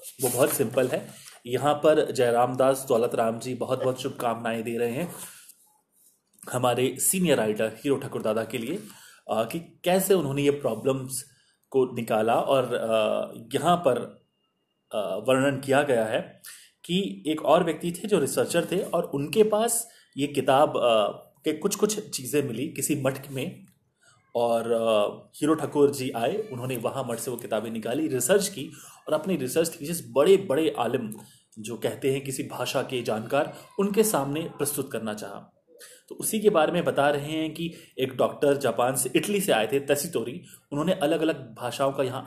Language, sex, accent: Hindi, male, native